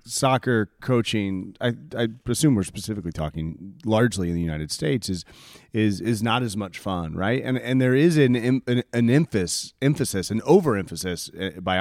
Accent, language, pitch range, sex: American, English, 95-130 Hz, male